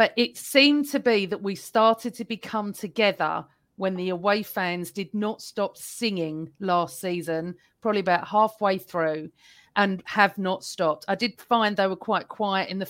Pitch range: 185-235 Hz